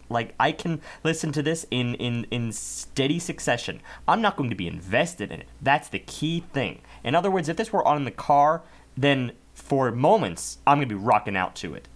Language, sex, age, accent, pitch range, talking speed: English, male, 30-49, American, 105-140 Hz, 220 wpm